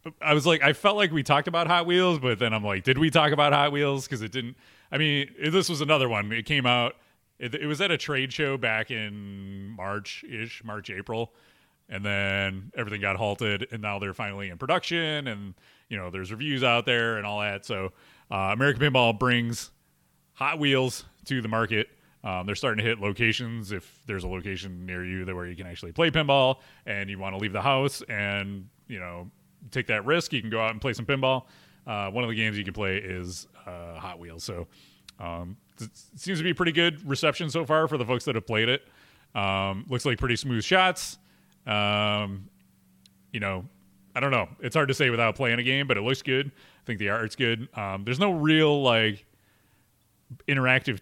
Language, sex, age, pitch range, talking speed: English, male, 30-49, 100-140 Hz, 215 wpm